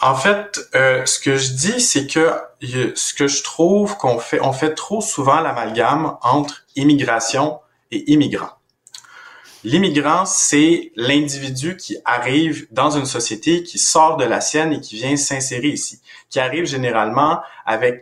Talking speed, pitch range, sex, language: 155 wpm, 120-165 Hz, male, French